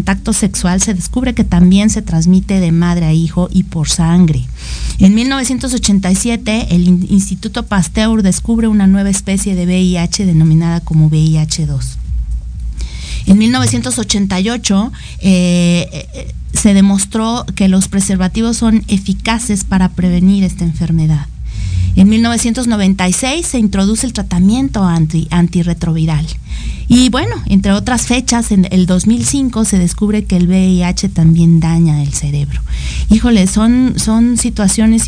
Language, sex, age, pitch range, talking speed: Spanish, female, 40-59, 170-215 Hz, 120 wpm